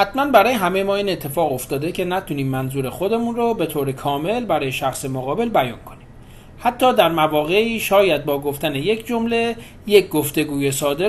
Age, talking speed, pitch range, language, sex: 40-59, 170 wpm, 140-215 Hz, Persian, male